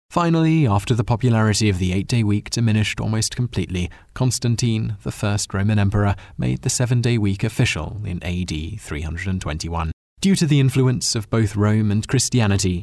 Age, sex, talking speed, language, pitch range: 30-49, male, 155 wpm, English, 95-125 Hz